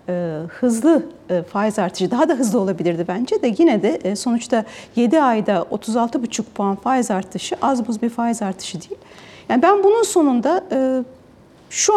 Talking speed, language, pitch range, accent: 145 wpm, Turkish, 215-285 Hz, native